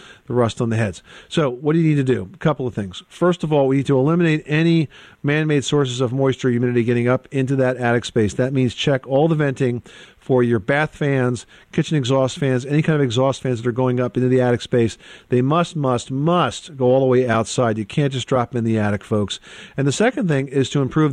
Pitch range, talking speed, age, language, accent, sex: 120-150 Hz, 250 wpm, 50-69, English, American, male